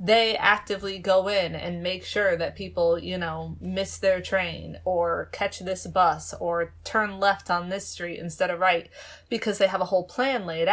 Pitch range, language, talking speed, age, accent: 180-220 Hz, English, 190 wpm, 20-39, American